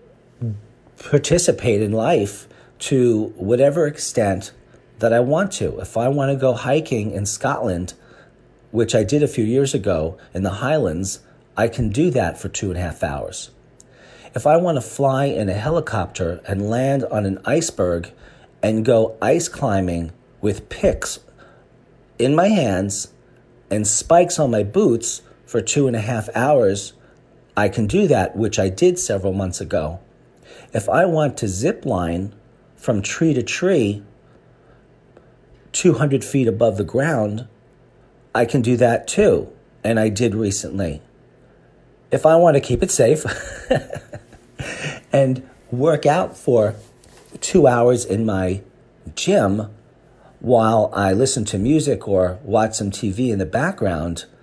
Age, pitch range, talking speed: 40-59, 100-135 Hz, 150 wpm